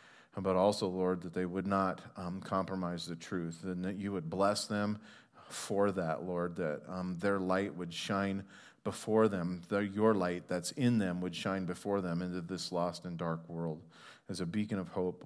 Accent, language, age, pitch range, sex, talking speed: American, English, 40-59, 85-110 Hz, male, 190 wpm